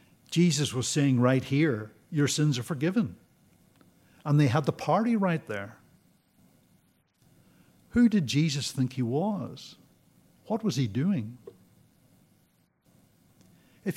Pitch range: 125-165 Hz